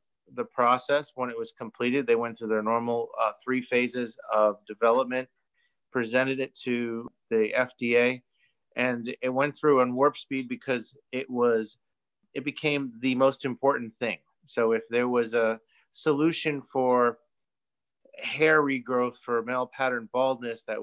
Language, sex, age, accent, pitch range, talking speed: English, male, 30-49, American, 115-130 Hz, 145 wpm